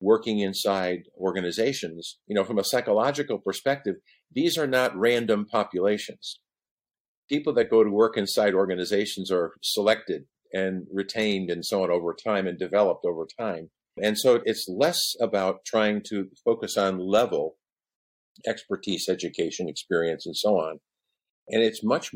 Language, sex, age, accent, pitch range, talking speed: English, male, 50-69, American, 90-110 Hz, 145 wpm